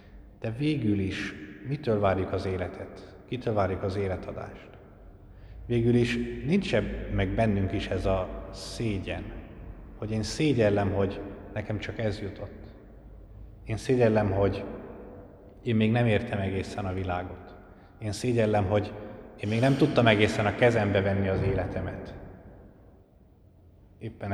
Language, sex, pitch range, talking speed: Hungarian, male, 95-105 Hz, 130 wpm